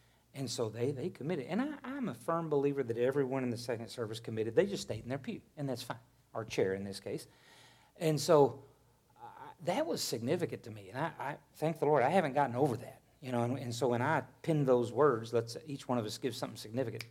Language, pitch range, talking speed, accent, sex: English, 115-135 Hz, 240 wpm, American, male